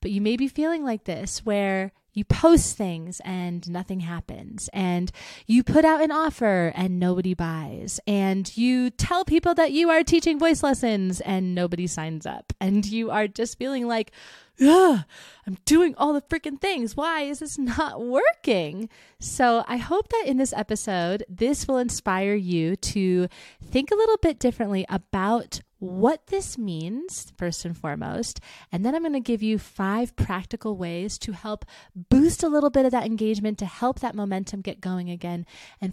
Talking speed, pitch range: 175 wpm, 190-265 Hz